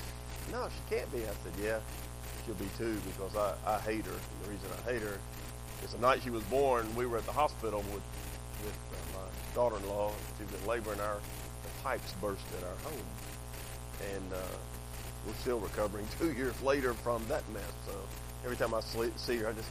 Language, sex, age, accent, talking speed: English, male, 40-59, American, 205 wpm